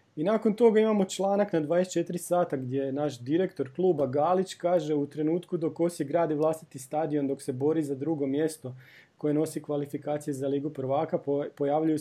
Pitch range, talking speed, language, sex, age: 140-180 Hz, 175 wpm, Croatian, male, 30-49